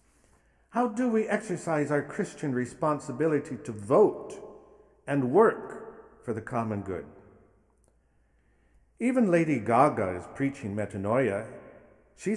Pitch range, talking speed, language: 100-160 Hz, 105 wpm, English